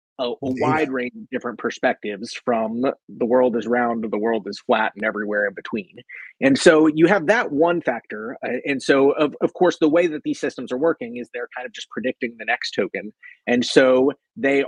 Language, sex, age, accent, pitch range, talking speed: English, male, 30-49, American, 120-155 Hz, 215 wpm